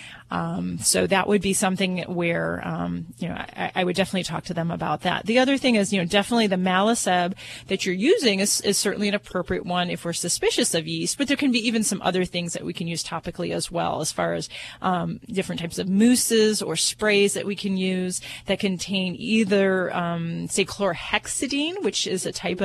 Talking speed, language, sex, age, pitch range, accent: 215 wpm, English, female, 30-49, 175-205 Hz, American